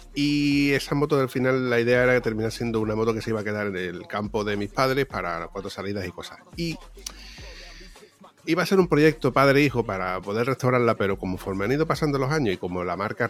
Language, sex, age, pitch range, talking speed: Spanish, male, 30-49, 100-125 Hz, 235 wpm